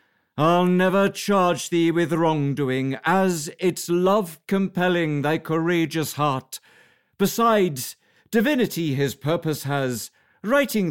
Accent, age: British, 50-69